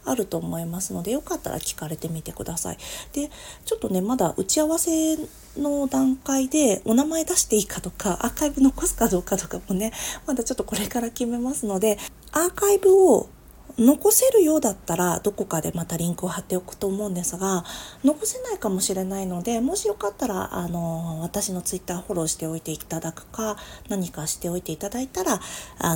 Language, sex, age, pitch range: Japanese, female, 40-59, 170-270 Hz